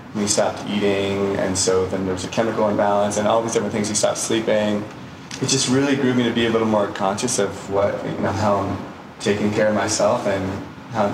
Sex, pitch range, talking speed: male, 95-115 Hz, 225 wpm